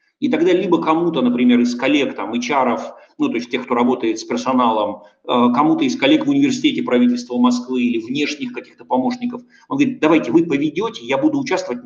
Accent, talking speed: native, 180 wpm